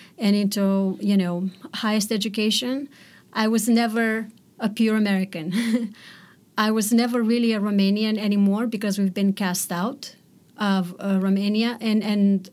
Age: 30-49